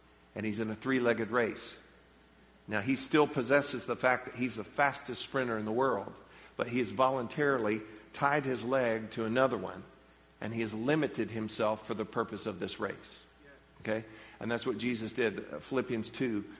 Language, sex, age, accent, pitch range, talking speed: English, male, 50-69, American, 105-130 Hz, 175 wpm